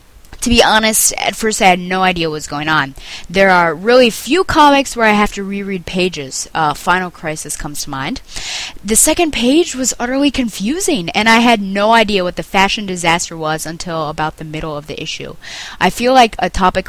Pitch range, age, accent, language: 165-220 Hz, 20-39, American, English